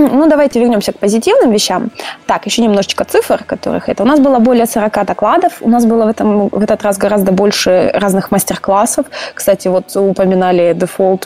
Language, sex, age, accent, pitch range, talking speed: Russian, female, 20-39, native, 185-220 Hz, 180 wpm